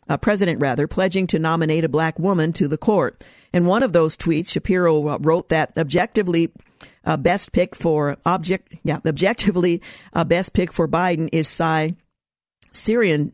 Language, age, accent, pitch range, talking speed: English, 50-69, American, 155-185 Hz, 160 wpm